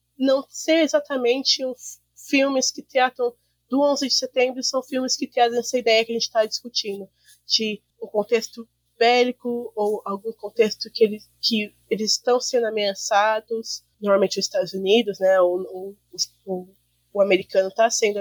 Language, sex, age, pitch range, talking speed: Portuguese, female, 20-39, 210-255 Hz, 145 wpm